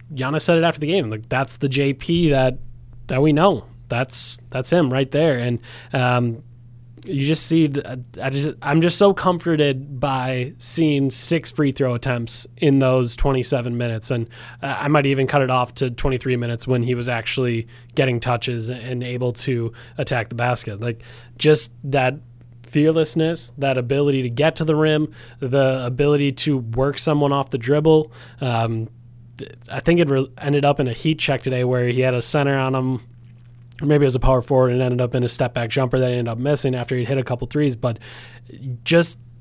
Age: 20-39